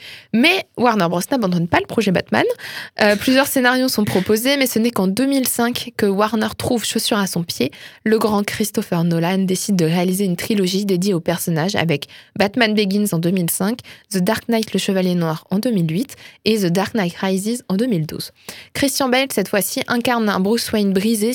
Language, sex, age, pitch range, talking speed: French, female, 20-39, 185-230 Hz, 185 wpm